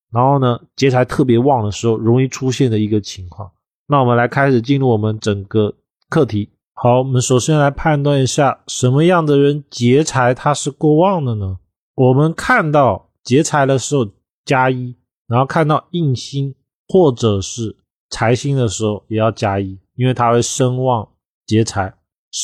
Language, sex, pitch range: Chinese, male, 105-145 Hz